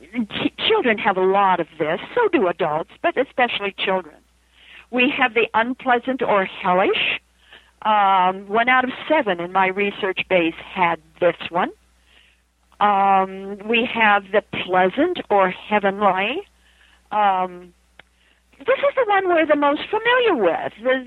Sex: female